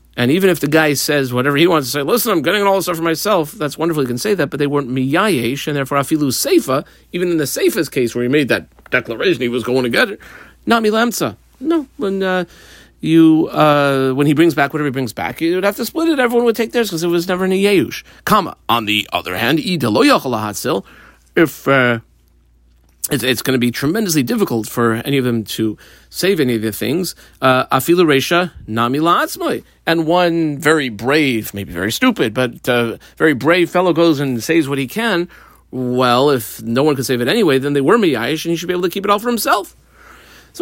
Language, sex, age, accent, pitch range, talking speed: English, male, 40-59, American, 125-175 Hz, 215 wpm